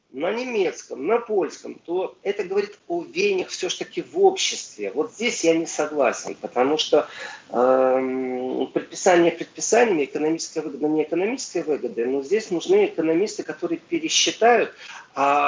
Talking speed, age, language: 130 wpm, 40-59, Russian